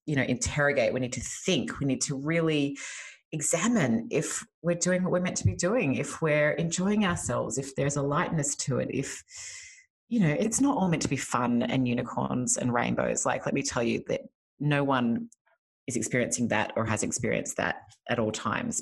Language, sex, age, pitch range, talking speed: English, female, 30-49, 125-170 Hz, 200 wpm